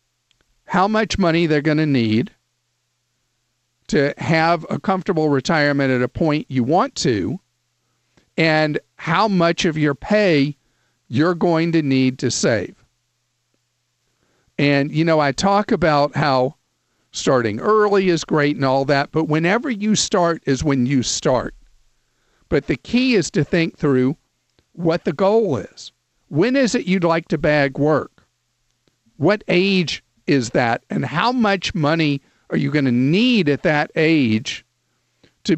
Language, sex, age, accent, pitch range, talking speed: English, male, 50-69, American, 125-170 Hz, 150 wpm